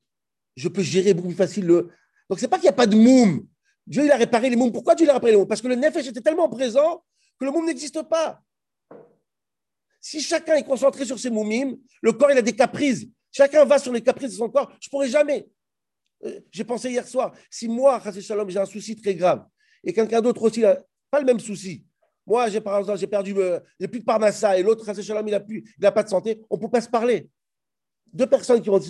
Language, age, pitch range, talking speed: French, 50-69, 210-280 Hz, 250 wpm